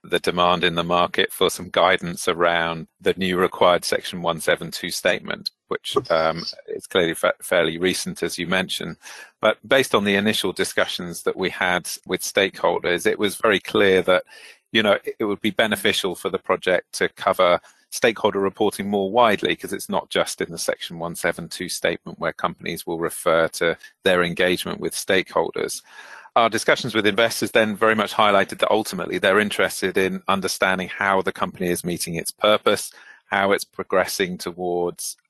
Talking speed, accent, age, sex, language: 170 wpm, British, 40-59, male, English